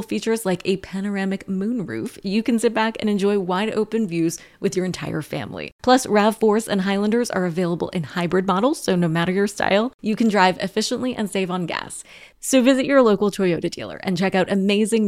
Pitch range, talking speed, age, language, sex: 185-225 Hz, 200 wpm, 20-39, English, female